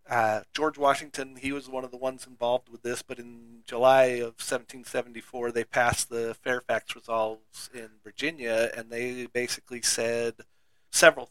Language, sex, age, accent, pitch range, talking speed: English, male, 40-59, American, 115-130 Hz, 150 wpm